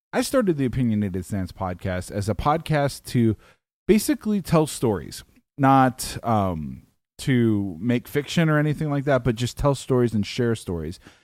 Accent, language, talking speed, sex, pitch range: American, English, 155 wpm, male, 105-135 Hz